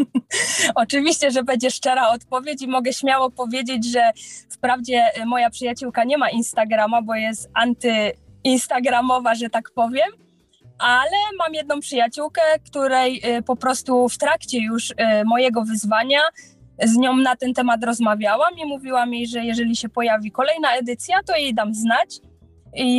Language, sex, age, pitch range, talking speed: Polish, female, 20-39, 235-285 Hz, 140 wpm